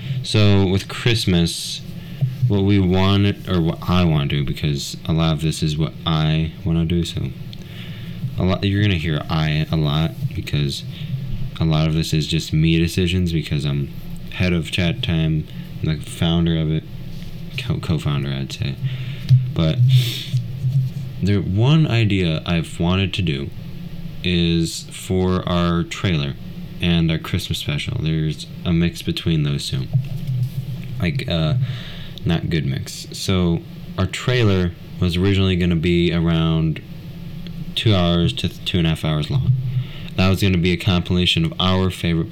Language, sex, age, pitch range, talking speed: English, male, 20-39, 80-130 Hz, 155 wpm